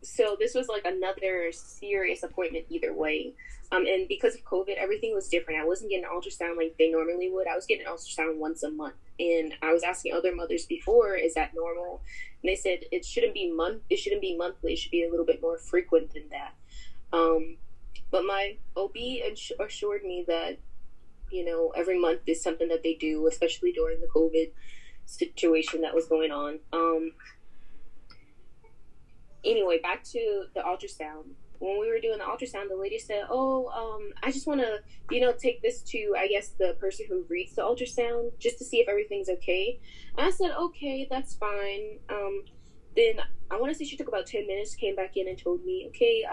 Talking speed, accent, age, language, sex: 200 wpm, American, 20-39, English, female